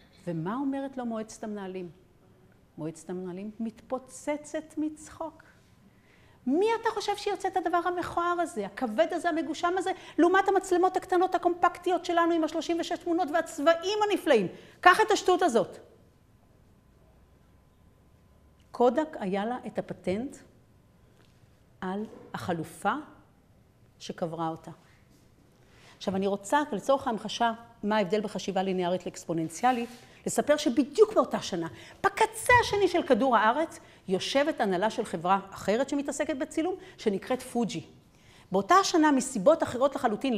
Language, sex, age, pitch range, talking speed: Hebrew, female, 50-69, 205-340 Hz, 115 wpm